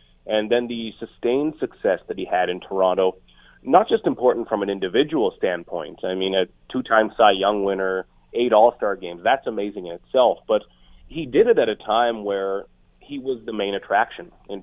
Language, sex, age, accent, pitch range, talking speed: English, male, 30-49, American, 105-140 Hz, 185 wpm